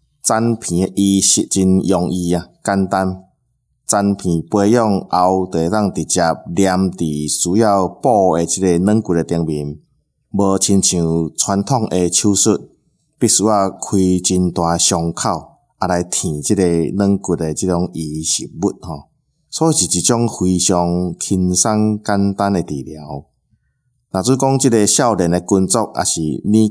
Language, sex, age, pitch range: Chinese, male, 20-39, 80-100 Hz